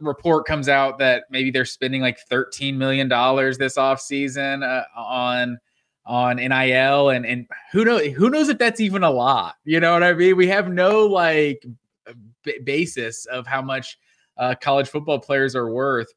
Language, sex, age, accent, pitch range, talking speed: English, male, 20-39, American, 130-155 Hz, 180 wpm